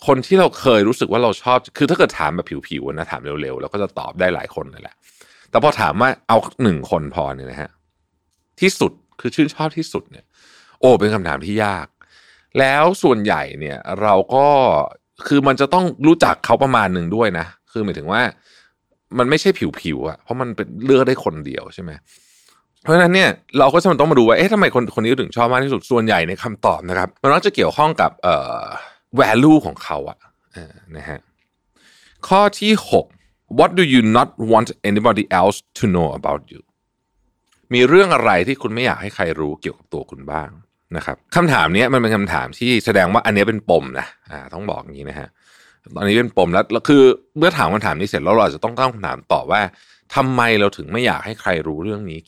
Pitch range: 90-140 Hz